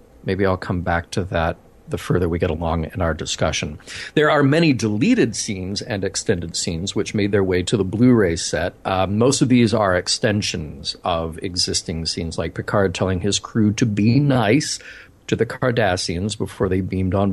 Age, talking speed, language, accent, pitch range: 40-59, 185 wpm, English, American, 90-115 Hz